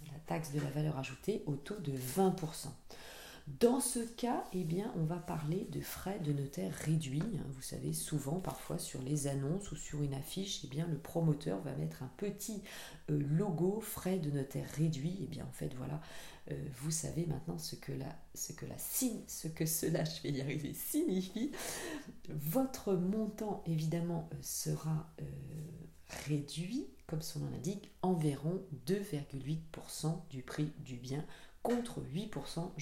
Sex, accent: female, French